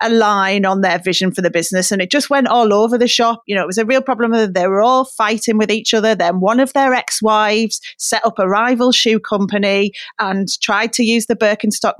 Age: 30-49